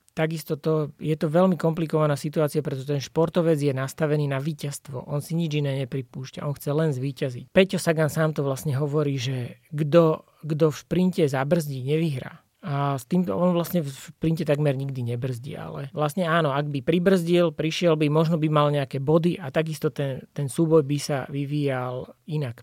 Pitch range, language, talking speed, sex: 140-165 Hz, Slovak, 180 wpm, male